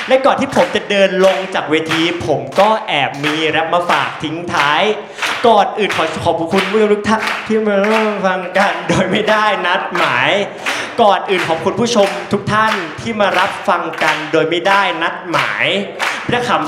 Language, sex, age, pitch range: Thai, male, 20-39, 175-230 Hz